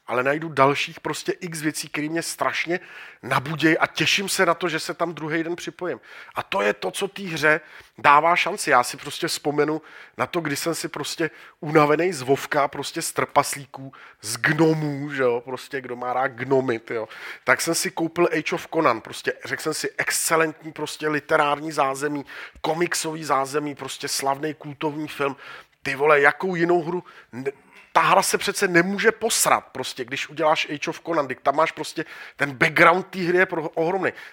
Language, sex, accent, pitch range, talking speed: Czech, male, native, 145-175 Hz, 180 wpm